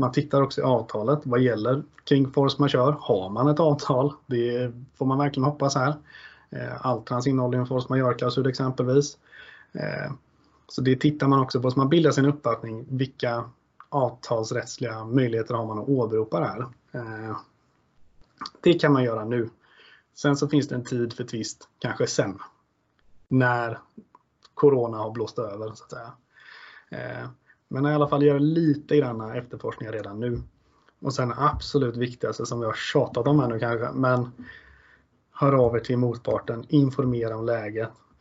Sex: male